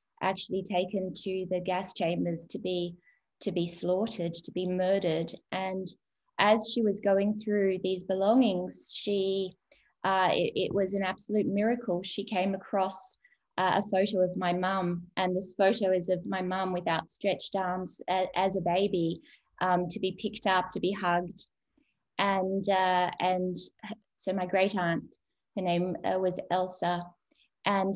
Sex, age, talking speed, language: female, 20-39, 155 wpm, English